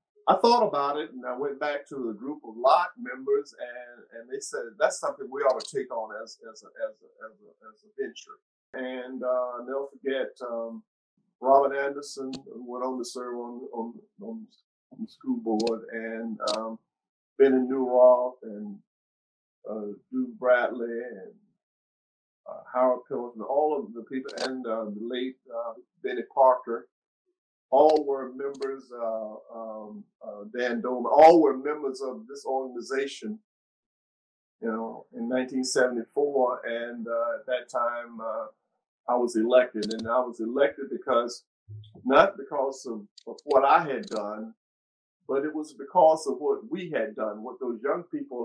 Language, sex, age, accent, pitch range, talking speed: English, male, 50-69, American, 115-180 Hz, 165 wpm